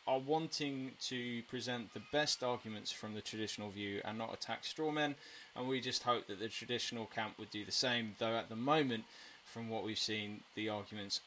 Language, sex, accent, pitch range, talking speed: English, male, British, 115-145 Hz, 200 wpm